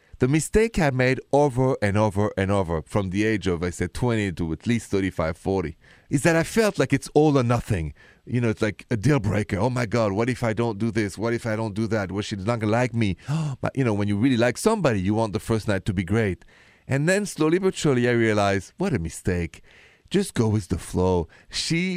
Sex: male